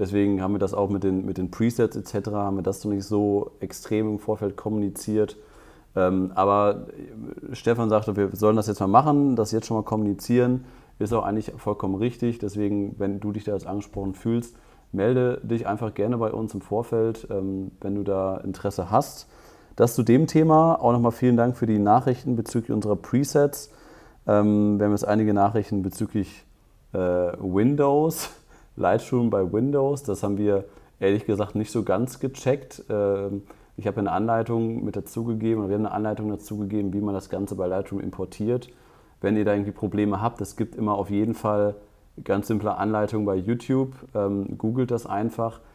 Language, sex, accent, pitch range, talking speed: German, male, German, 100-115 Hz, 180 wpm